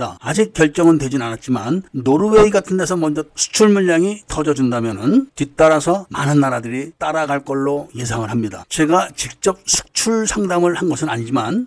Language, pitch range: Korean, 140-190 Hz